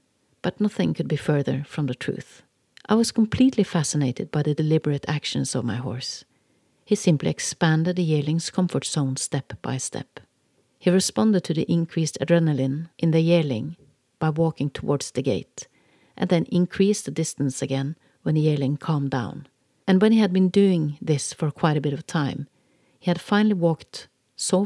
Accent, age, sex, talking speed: Swedish, 40-59, female, 175 wpm